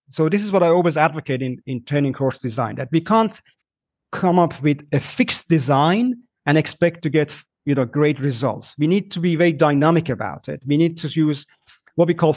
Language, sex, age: English, male, 30-49